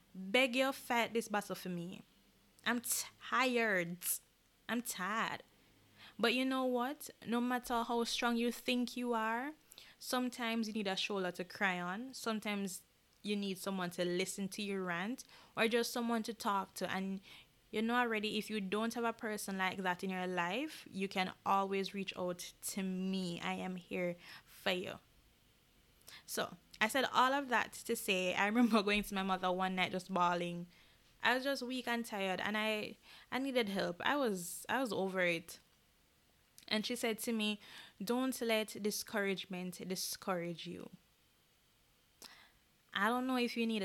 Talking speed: 170 wpm